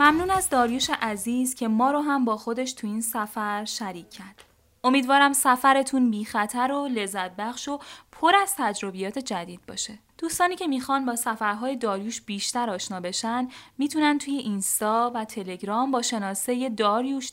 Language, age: Persian, 10-29